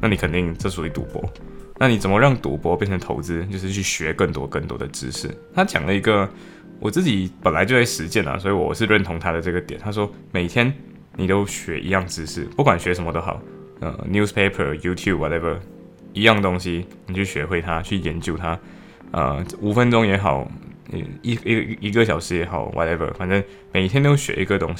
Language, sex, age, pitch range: Chinese, male, 20-39, 85-100 Hz